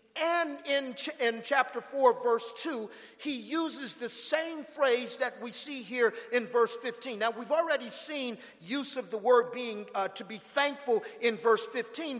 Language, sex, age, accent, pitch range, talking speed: English, male, 50-69, American, 220-270 Hz, 175 wpm